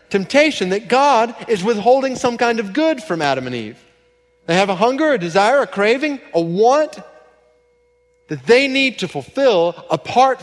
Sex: male